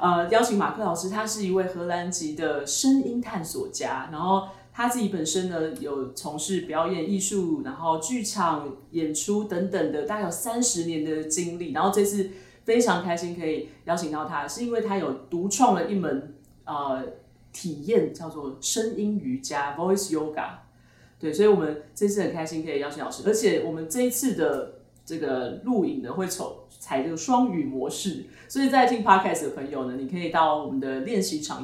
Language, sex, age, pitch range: Chinese, female, 30-49, 155-210 Hz